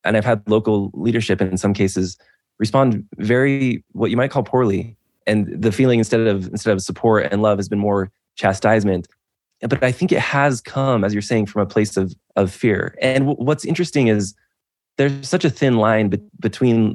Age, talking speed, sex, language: 20-39, 200 wpm, male, English